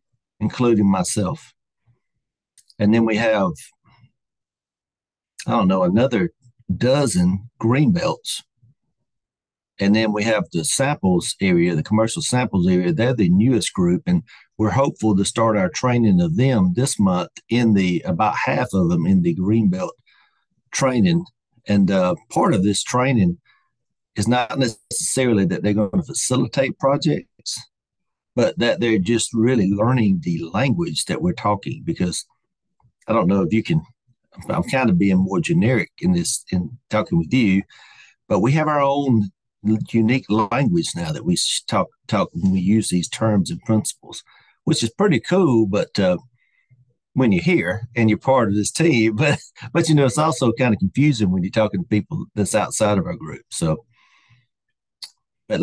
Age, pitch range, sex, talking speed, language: 50-69, 105-165 Hz, male, 160 wpm, English